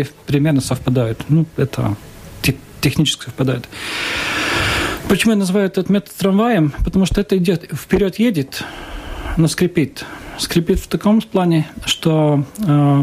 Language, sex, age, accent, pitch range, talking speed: Russian, male, 40-59, native, 140-165 Hz, 120 wpm